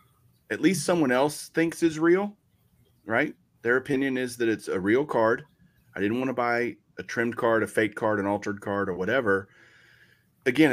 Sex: male